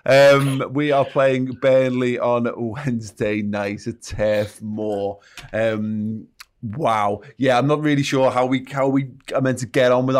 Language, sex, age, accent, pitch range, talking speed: English, male, 30-49, British, 105-130 Hz, 165 wpm